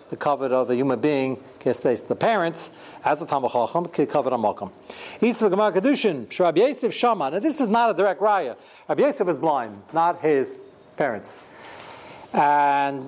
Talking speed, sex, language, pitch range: 135 wpm, male, English, 135-205 Hz